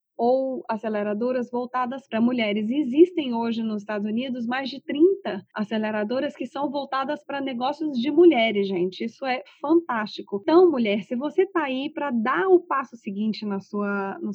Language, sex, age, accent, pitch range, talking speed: Portuguese, female, 20-39, Brazilian, 210-275 Hz, 155 wpm